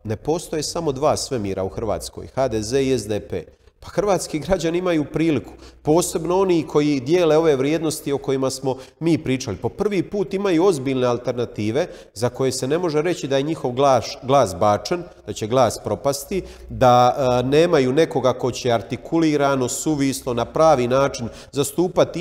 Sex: male